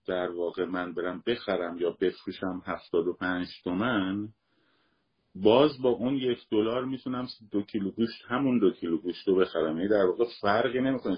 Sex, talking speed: male, 155 wpm